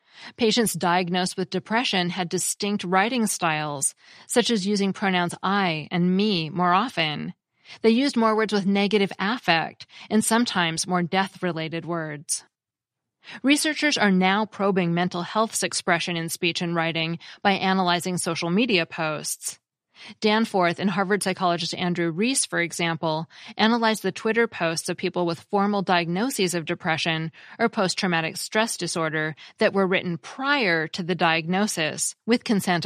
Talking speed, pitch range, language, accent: 140 wpm, 170-210 Hz, English, American